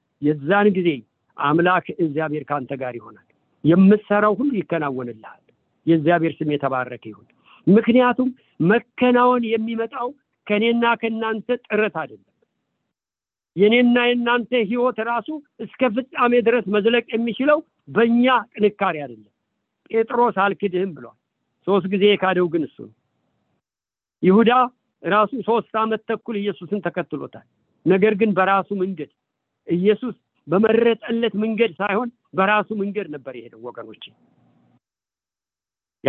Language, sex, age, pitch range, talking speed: English, male, 50-69, 175-235 Hz, 75 wpm